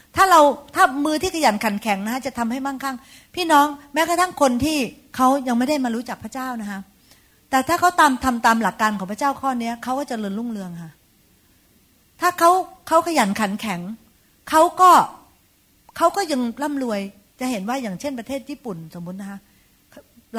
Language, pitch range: Thai, 200-275 Hz